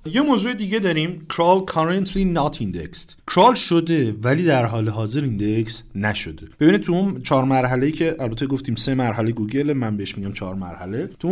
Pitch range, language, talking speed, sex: 100-155 Hz, Persian, 180 wpm, male